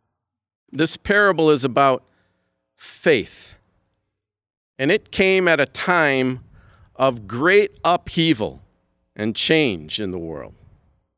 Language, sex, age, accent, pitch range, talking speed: English, male, 50-69, American, 130-185 Hz, 100 wpm